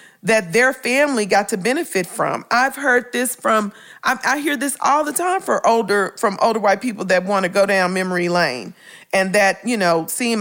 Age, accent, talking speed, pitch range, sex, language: 40-59, American, 210 wpm, 185-250 Hz, female, English